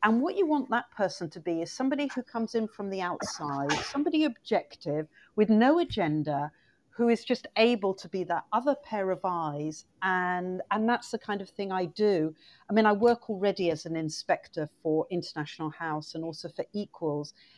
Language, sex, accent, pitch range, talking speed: English, female, British, 170-230 Hz, 190 wpm